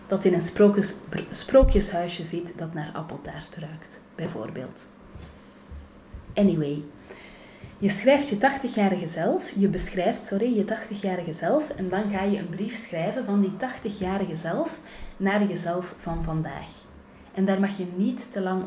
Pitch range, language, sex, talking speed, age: 170-205 Hz, Dutch, female, 150 wpm, 30-49